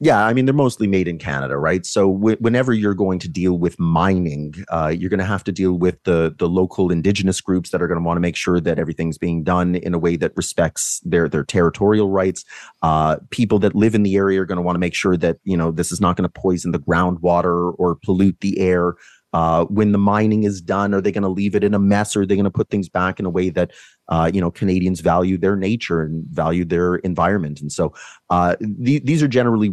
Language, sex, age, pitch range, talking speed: English, male, 30-49, 85-105 Hz, 250 wpm